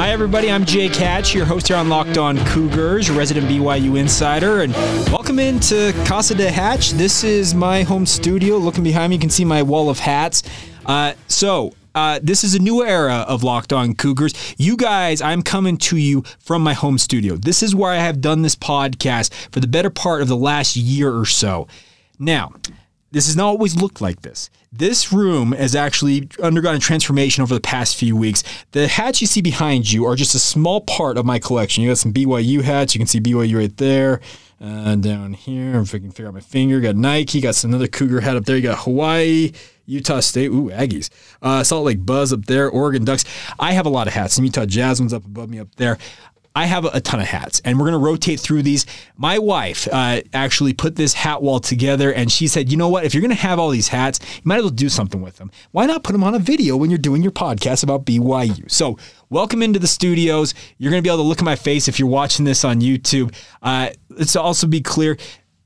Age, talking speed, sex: 20-39, 230 wpm, male